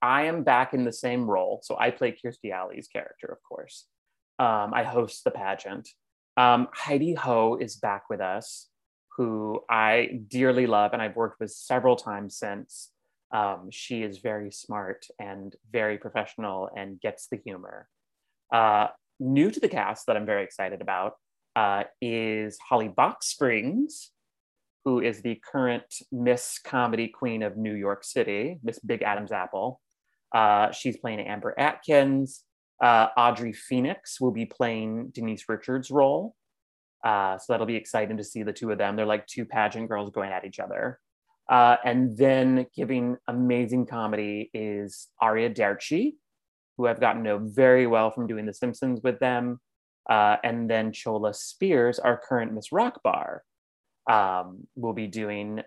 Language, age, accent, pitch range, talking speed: English, 30-49, American, 105-125 Hz, 160 wpm